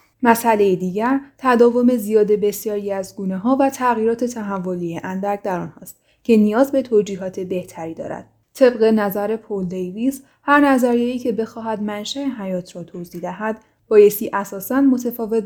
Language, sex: Persian, female